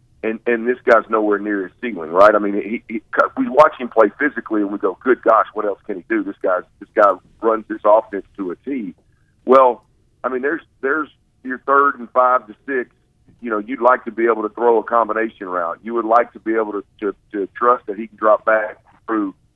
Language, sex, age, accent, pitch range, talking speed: English, male, 50-69, American, 105-125 Hz, 235 wpm